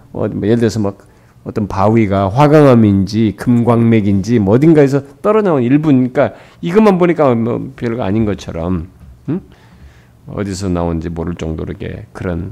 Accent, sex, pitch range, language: native, male, 90-140 Hz, Korean